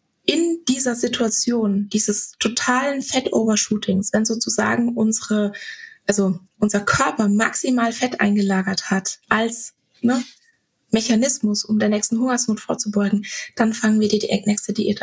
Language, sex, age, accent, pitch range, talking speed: German, female, 20-39, German, 215-250 Hz, 120 wpm